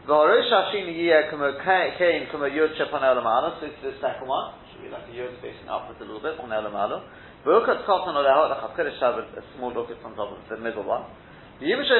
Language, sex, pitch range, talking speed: English, male, 125-170 Hz, 75 wpm